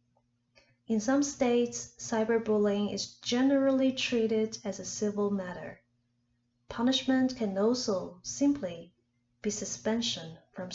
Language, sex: Chinese, female